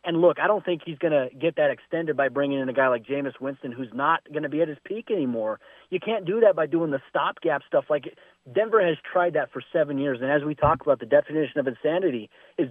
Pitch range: 140-175 Hz